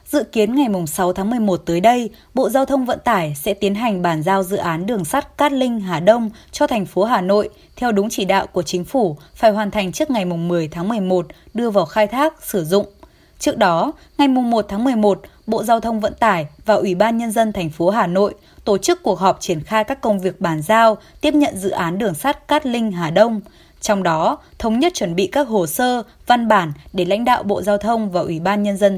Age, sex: 20-39, female